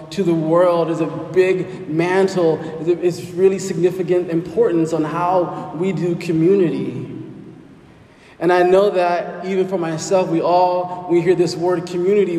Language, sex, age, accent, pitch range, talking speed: English, male, 20-39, American, 145-180 Hz, 150 wpm